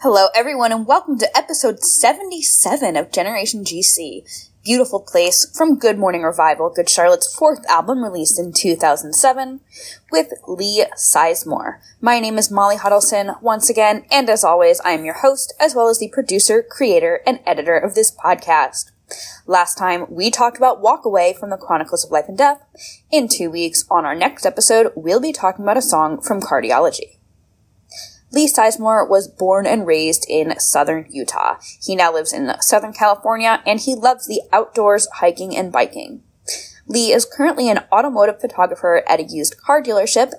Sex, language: female, English